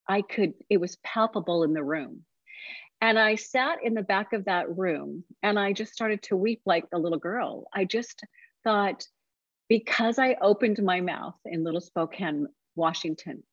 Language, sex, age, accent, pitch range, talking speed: English, female, 40-59, American, 175-225 Hz, 175 wpm